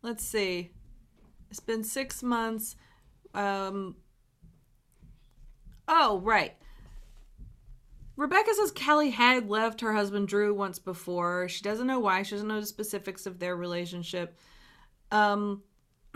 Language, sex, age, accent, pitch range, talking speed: English, female, 30-49, American, 170-210 Hz, 120 wpm